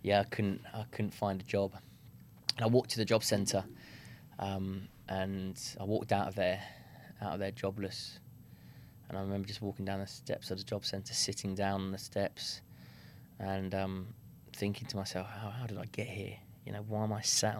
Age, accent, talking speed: 20-39, British, 200 wpm